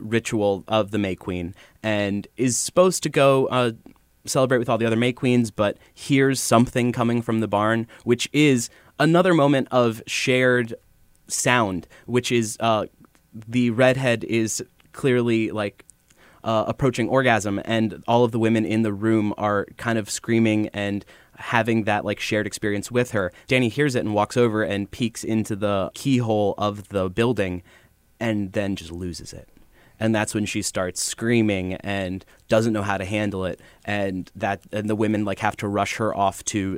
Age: 20-39